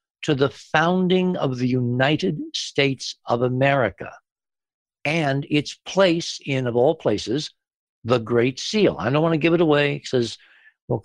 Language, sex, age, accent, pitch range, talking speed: English, male, 60-79, American, 115-160 Hz, 150 wpm